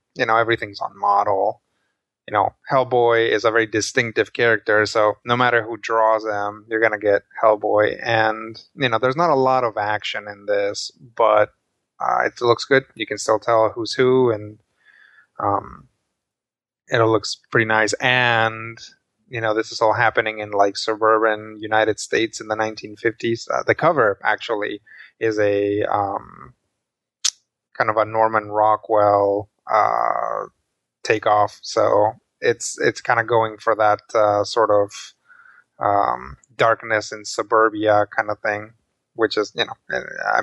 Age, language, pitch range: 20-39, English, 105-125 Hz